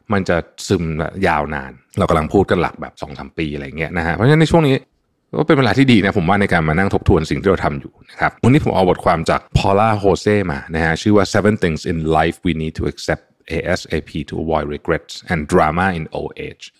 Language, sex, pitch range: Thai, male, 80-105 Hz